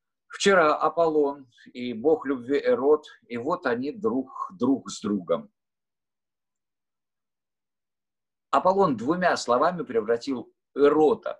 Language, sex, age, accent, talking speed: Russian, male, 50-69, native, 95 wpm